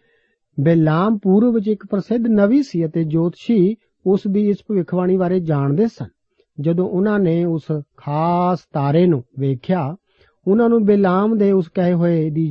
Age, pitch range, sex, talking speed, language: 50-69, 155-205 Hz, male, 145 wpm, Punjabi